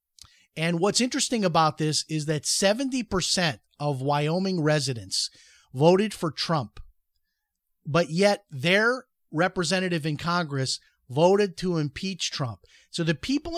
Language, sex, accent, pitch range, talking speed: English, male, American, 140-185 Hz, 120 wpm